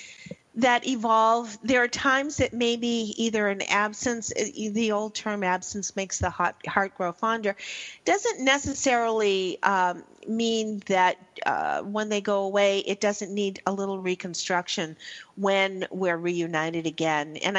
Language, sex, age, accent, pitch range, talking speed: English, female, 40-59, American, 180-230 Hz, 135 wpm